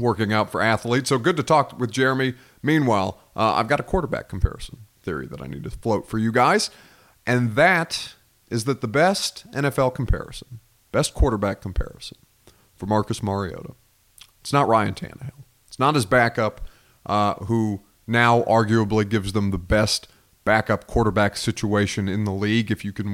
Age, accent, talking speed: 30-49, American, 170 wpm